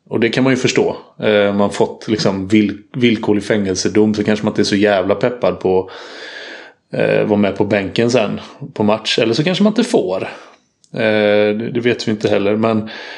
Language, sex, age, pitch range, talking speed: Swedish, male, 30-49, 105-115 Hz, 190 wpm